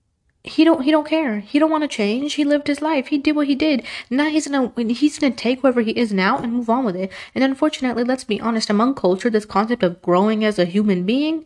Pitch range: 190-240 Hz